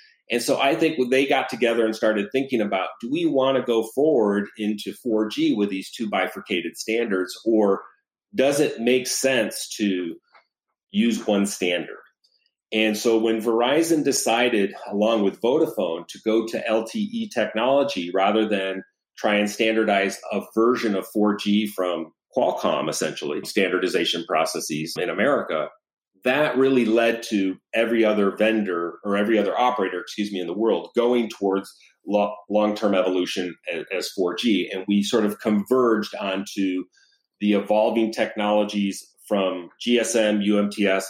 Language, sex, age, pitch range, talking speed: English, male, 40-59, 100-120 Hz, 140 wpm